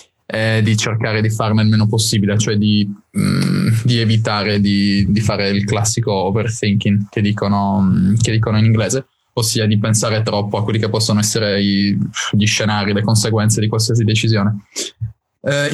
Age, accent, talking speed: 20-39, native, 155 wpm